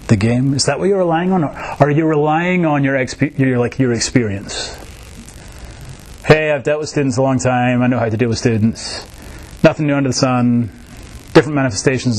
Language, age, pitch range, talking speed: English, 30-49, 120-155 Hz, 200 wpm